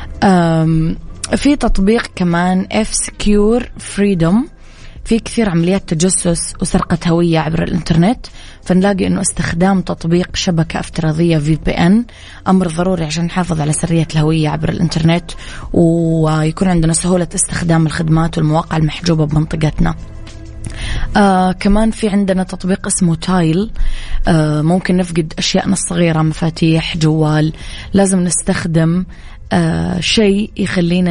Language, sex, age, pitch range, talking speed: English, female, 20-39, 160-195 Hz, 105 wpm